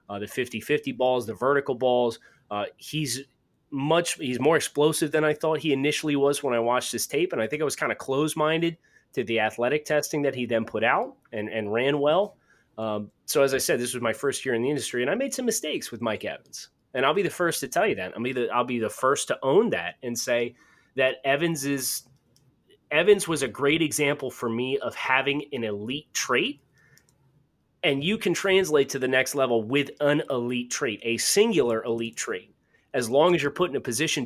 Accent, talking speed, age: American, 220 wpm, 30-49